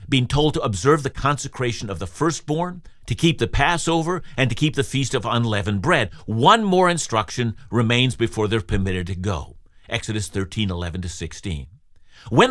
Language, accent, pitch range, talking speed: English, American, 105-145 Hz, 175 wpm